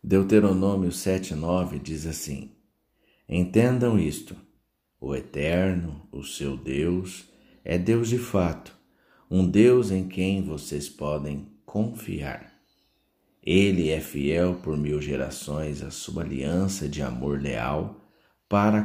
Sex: male